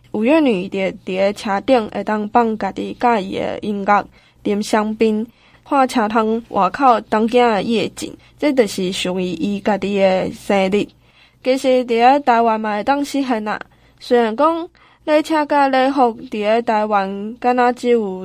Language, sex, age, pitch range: Chinese, female, 10-29, 205-250 Hz